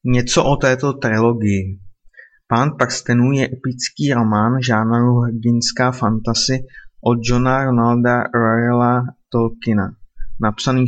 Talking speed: 100 wpm